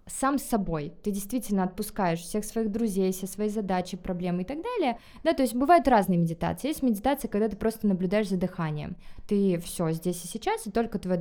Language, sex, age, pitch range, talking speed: Russian, female, 20-39, 175-215 Hz, 200 wpm